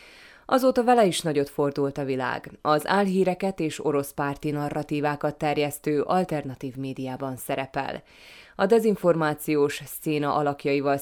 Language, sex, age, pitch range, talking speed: Hungarian, female, 20-39, 140-175 Hz, 115 wpm